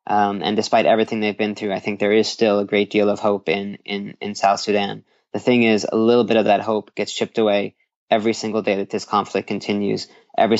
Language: English